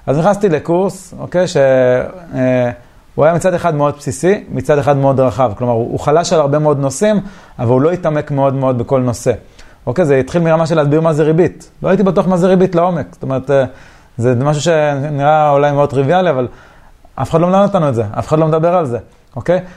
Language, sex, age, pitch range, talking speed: Hebrew, male, 30-49, 130-170 Hz, 205 wpm